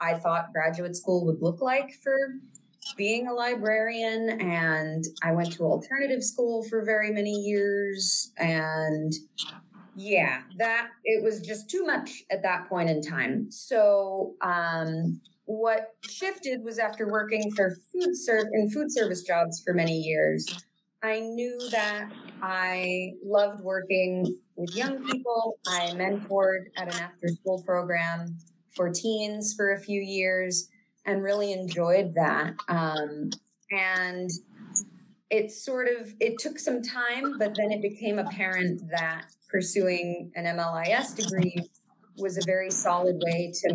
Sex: female